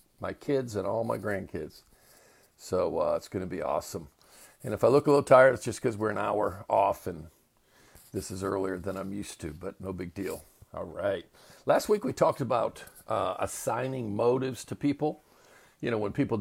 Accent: American